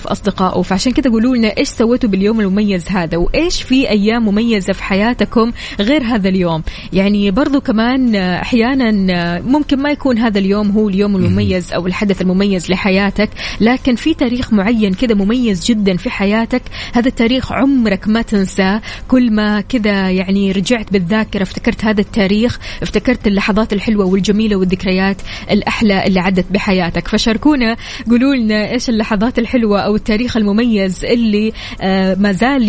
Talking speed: 145 wpm